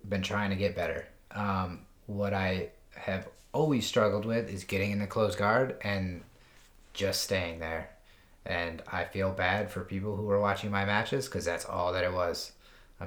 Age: 30-49